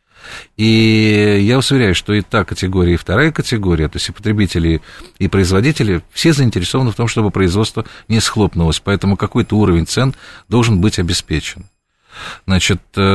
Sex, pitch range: male, 85-110 Hz